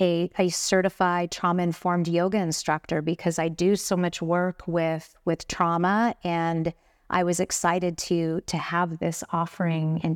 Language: English